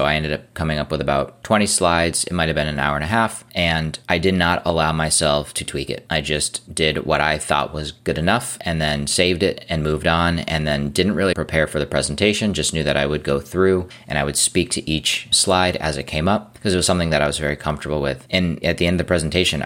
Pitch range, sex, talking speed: 75-85 Hz, male, 265 wpm